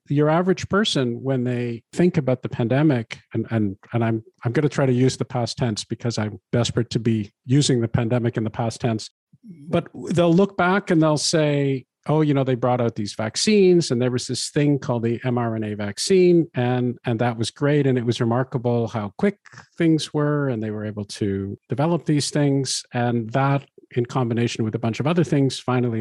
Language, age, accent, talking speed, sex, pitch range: English, 50-69, American, 210 wpm, male, 115-150 Hz